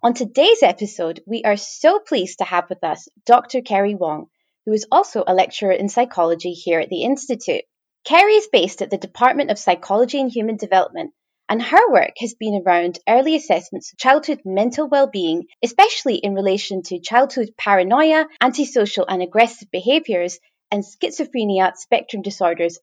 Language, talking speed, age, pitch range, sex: English, 165 wpm, 20-39, 185-275 Hz, female